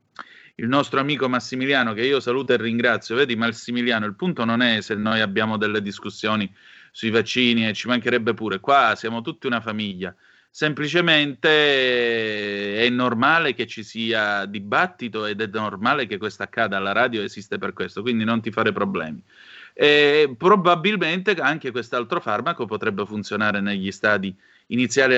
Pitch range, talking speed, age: 110-135 Hz, 155 wpm, 30-49